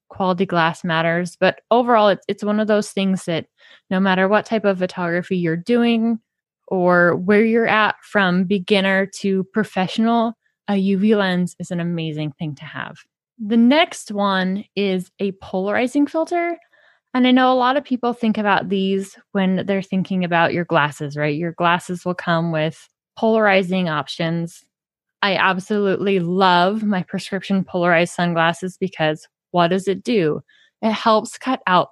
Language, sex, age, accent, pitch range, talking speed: English, female, 20-39, American, 175-220 Hz, 155 wpm